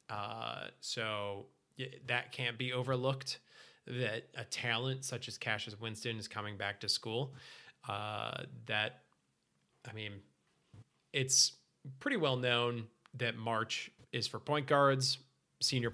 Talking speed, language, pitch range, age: 125 wpm, English, 110-135 Hz, 20-39